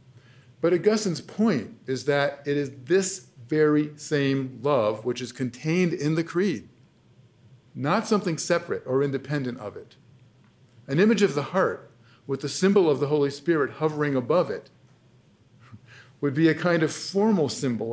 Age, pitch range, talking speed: 50-69, 125-155 Hz, 155 wpm